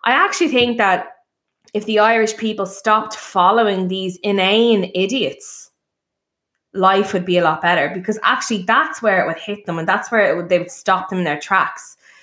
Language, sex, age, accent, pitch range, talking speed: English, female, 20-39, Irish, 185-225 Hz, 190 wpm